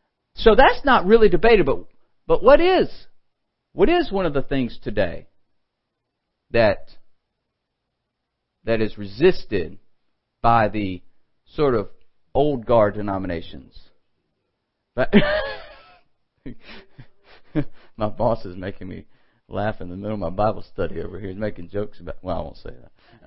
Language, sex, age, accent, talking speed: English, male, 50-69, American, 130 wpm